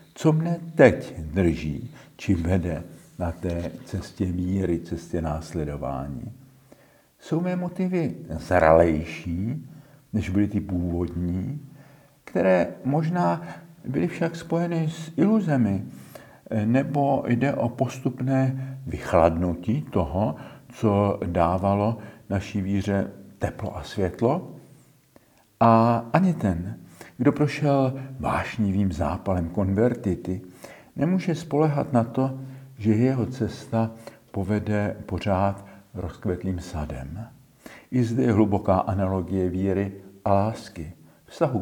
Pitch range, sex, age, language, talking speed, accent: 95-135 Hz, male, 60-79, Czech, 100 wpm, native